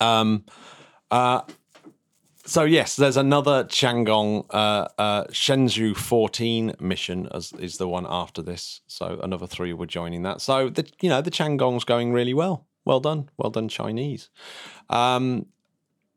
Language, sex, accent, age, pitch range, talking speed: English, male, British, 30-49, 95-120 Hz, 150 wpm